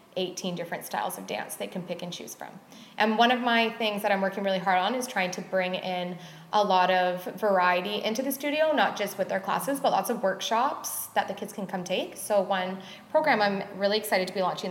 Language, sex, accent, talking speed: English, female, American, 235 wpm